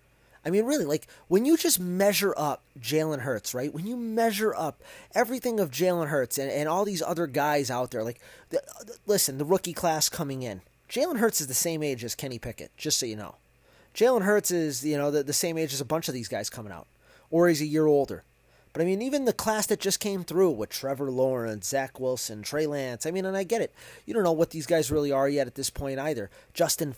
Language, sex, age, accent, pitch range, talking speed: English, male, 20-39, American, 135-185 Hz, 240 wpm